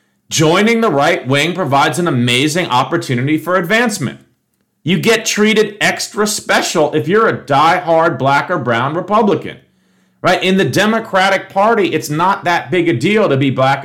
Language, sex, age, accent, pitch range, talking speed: English, male, 40-59, American, 150-205 Hz, 160 wpm